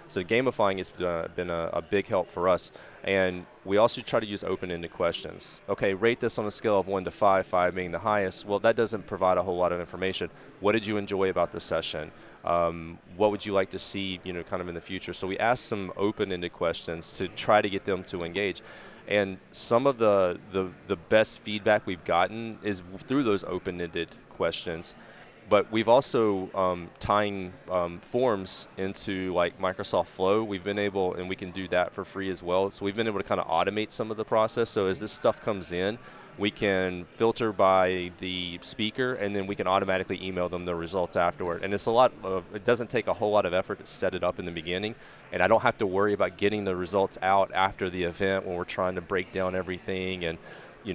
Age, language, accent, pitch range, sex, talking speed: 20-39, English, American, 90-105 Hz, male, 225 wpm